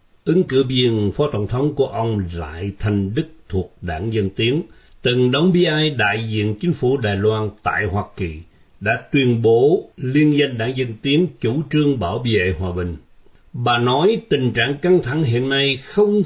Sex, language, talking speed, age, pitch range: male, Vietnamese, 185 wpm, 60-79, 100-150 Hz